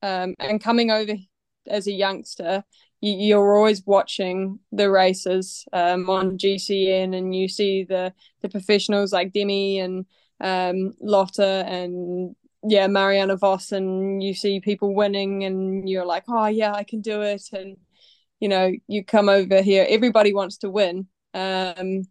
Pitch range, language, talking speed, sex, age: 190-210 Hz, English, 150 wpm, female, 20-39